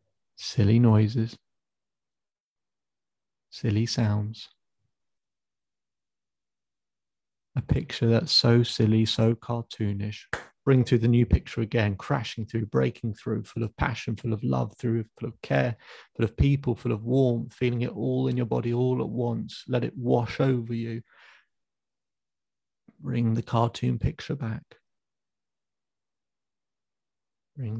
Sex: male